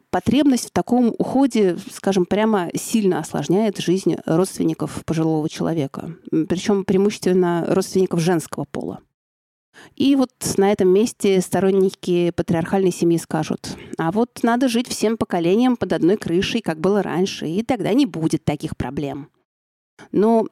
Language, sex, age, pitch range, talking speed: Russian, female, 30-49, 170-210 Hz, 130 wpm